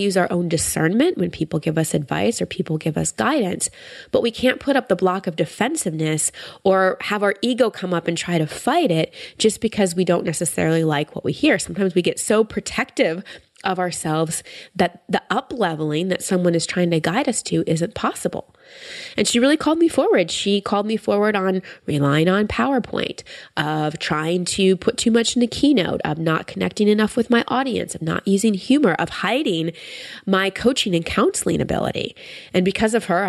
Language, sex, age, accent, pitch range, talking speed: English, female, 20-39, American, 165-225 Hz, 195 wpm